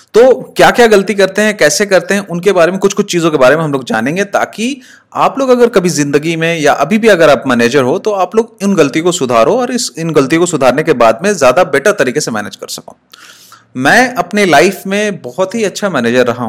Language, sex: Hindi, male